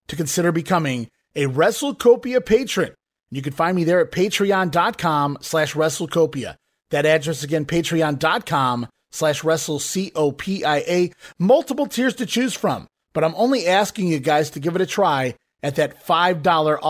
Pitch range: 155-210 Hz